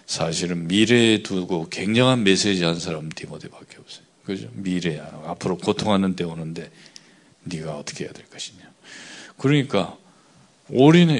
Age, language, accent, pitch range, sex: 40-59, Korean, native, 95-140 Hz, male